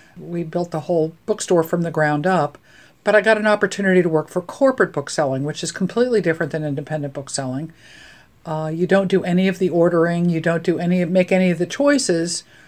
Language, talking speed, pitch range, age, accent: English, 205 wpm, 155-190 Hz, 50-69, American